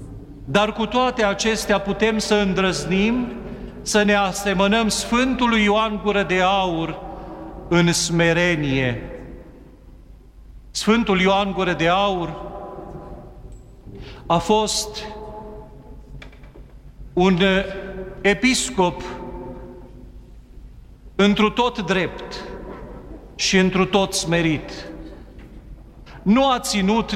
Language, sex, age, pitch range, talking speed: Romanian, male, 50-69, 175-210 Hz, 80 wpm